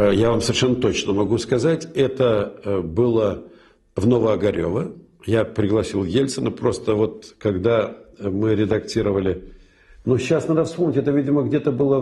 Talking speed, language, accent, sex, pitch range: 130 wpm, Ukrainian, native, male, 100-135 Hz